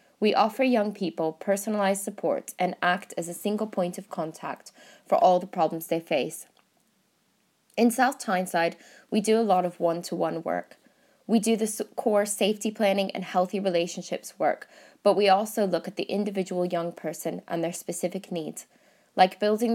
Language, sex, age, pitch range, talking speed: English, female, 20-39, 175-210 Hz, 165 wpm